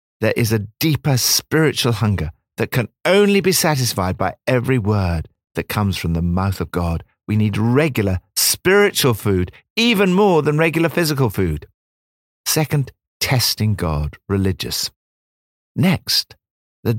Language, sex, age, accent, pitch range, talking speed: English, male, 50-69, British, 90-130 Hz, 135 wpm